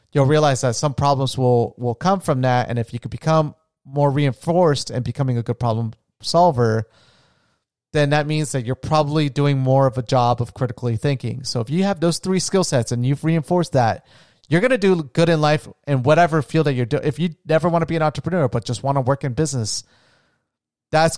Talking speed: 220 wpm